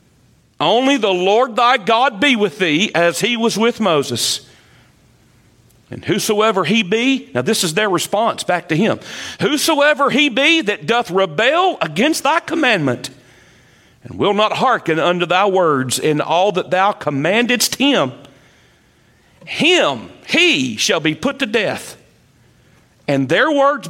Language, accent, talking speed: English, American, 145 wpm